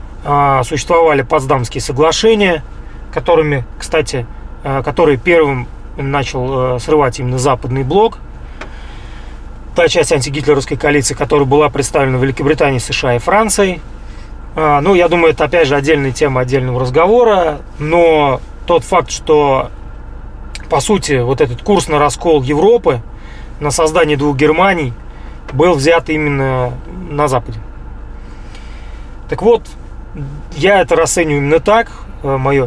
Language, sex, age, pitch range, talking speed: Russian, male, 30-49, 135-165 Hz, 115 wpm